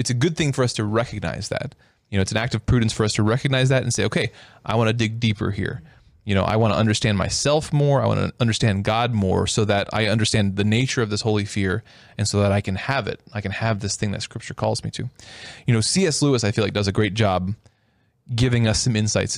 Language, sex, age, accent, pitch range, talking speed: English, male, 20-39, American, 100-125 Hz, 265 wpm